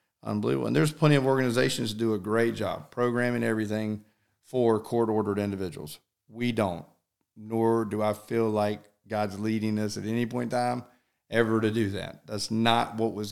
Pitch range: 105-115 Hz